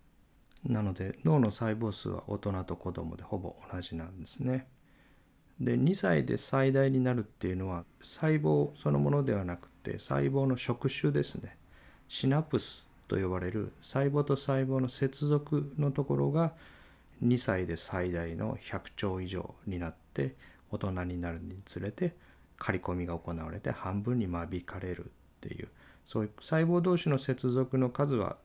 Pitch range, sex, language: 85-130 Hz, male, Japanese